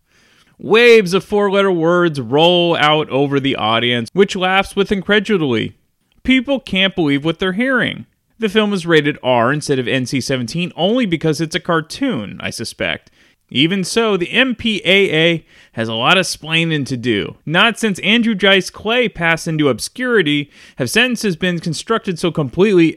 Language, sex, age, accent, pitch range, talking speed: English, male, 30-49, American, 140-200 Hz, 155 wpm